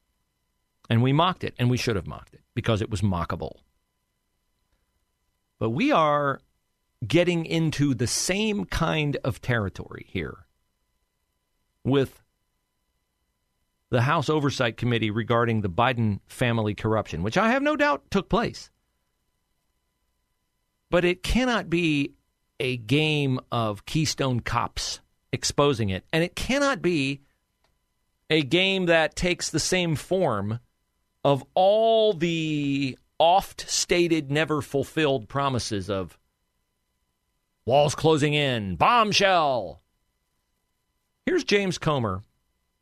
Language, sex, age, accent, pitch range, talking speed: English, male, 40-59, American, 100-160 Hz, 110 wpm